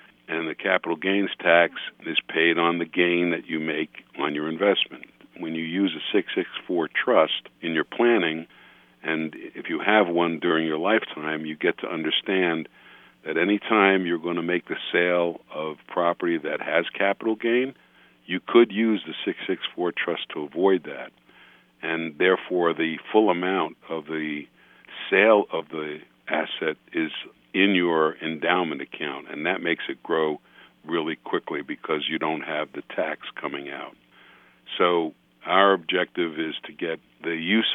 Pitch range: 80-95 Hz